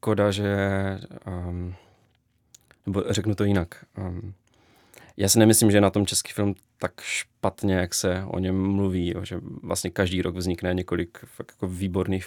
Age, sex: 20-39, male